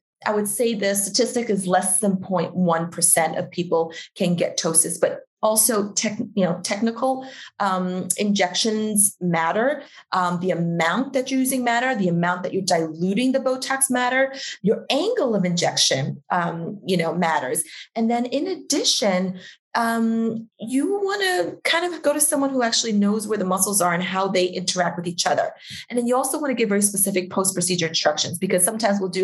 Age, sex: 30-49, female